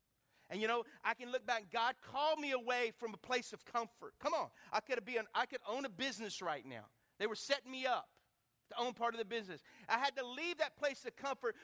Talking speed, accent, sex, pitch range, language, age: 245 wpm, American, male, 190-260 Hz, English, 50-69